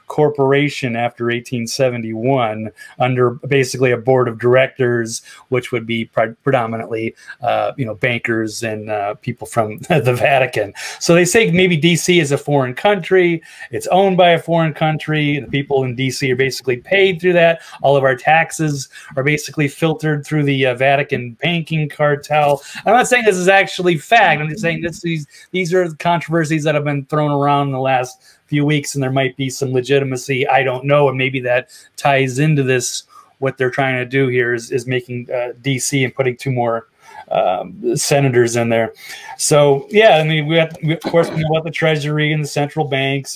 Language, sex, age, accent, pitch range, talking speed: English, male, 30-49, American, 130-160 Hz, 190 wpm